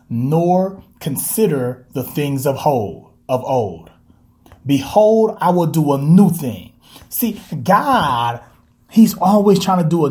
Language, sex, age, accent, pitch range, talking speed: English, male, 30-49, American, 140-190 Hz, 135 wpm